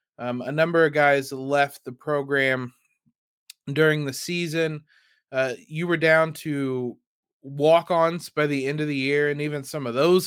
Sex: male